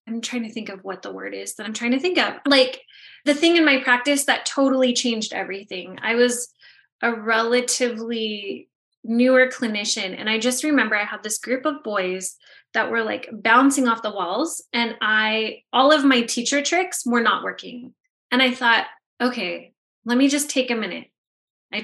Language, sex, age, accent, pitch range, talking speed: English, female, 20-39, American, 220-265 Hz, 190 wpm